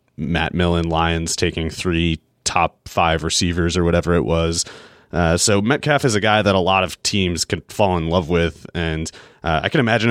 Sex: male